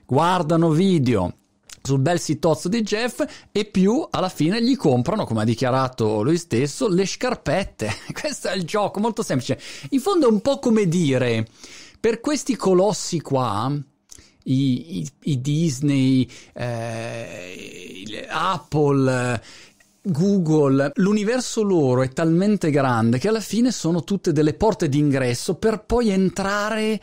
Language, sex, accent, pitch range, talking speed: Italian, male, native, 140-200 Hz, 135 wpm